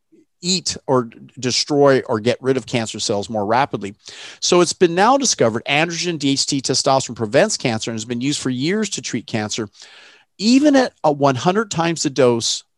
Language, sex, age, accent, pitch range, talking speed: English, male, 40-59, American, 115-155 Hz, 170 wpm